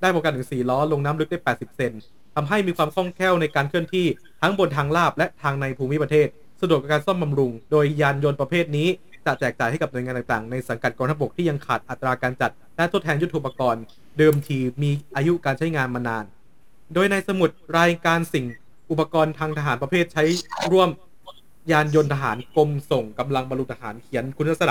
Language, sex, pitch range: Thai, male, 130-165 Hz